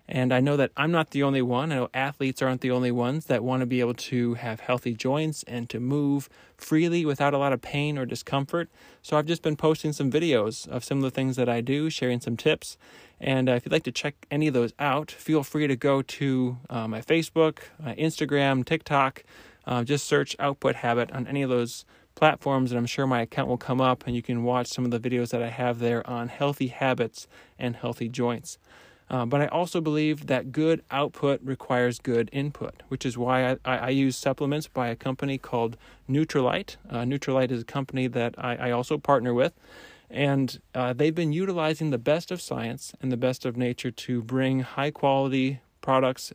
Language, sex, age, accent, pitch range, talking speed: English, male, 20-39, American, 125-140 Hz, 210 wpm